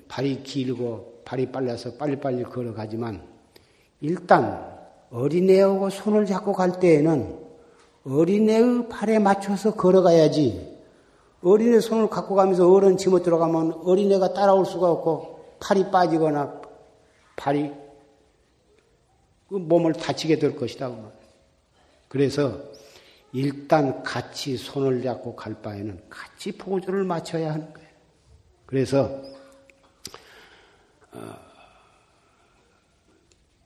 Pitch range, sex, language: 120-170 Hz, male, Korean